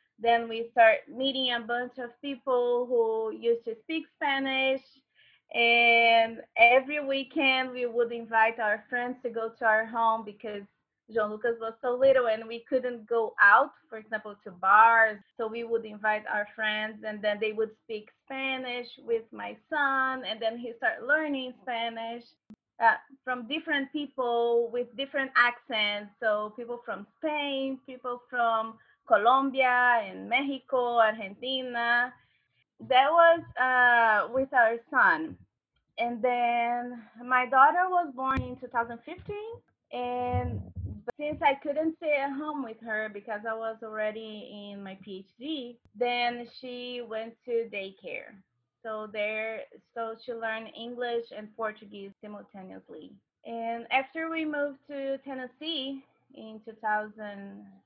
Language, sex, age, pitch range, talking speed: English, female, 20-39, 220-270 Hz, 135 wpm